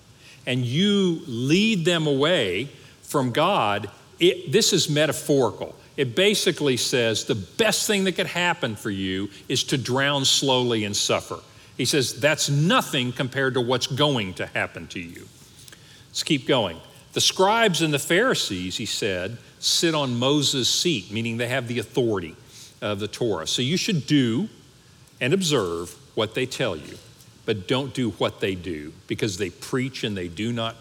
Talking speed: 160 wpm